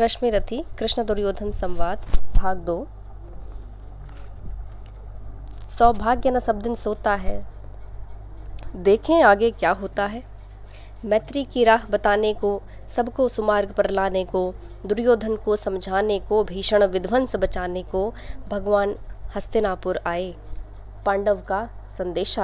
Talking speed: 105 wpm